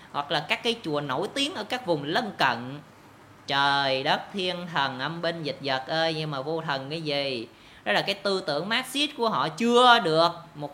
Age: 20-39